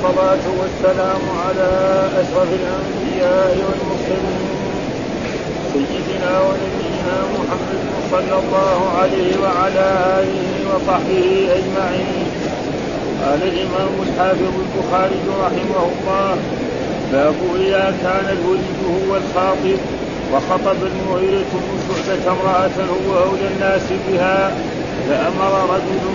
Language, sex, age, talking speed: Arabic, male, 50-69, 85 wpm